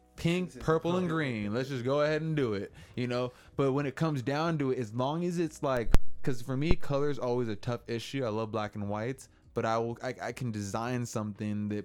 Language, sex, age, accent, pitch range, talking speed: English, male, 20-39, American, 105-125 Hz, 245 wpm